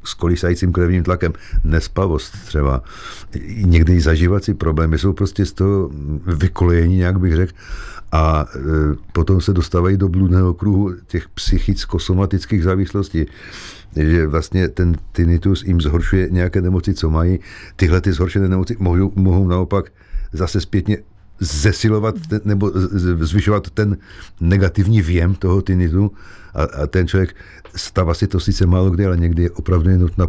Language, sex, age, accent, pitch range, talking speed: Czech, male, 50-69, native, 85-95 Hz, 140 wpm